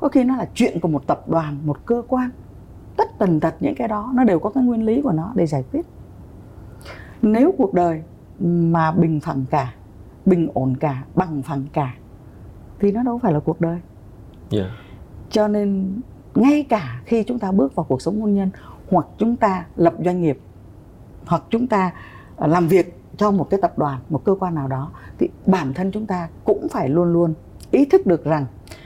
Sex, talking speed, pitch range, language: female, 200 wpm, 140-220 Hz, Vietnamese